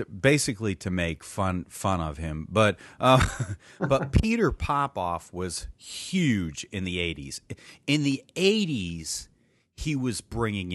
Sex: male